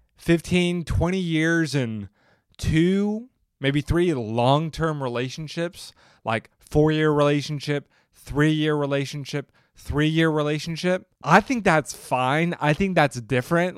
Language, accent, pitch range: English, American, 120-155 Hz